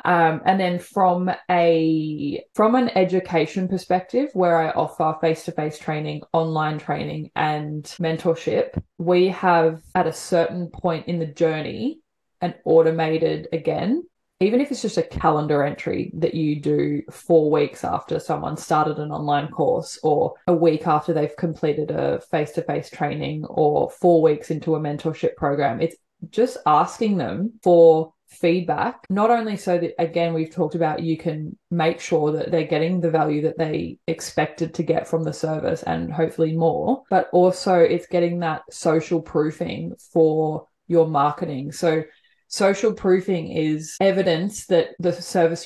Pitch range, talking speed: 155-180 Hz, 150 wpm